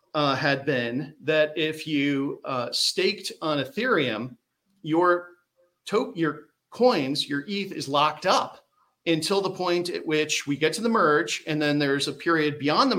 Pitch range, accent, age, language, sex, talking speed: 135-160 Hz, American, 40-59, English, male, 165 wpm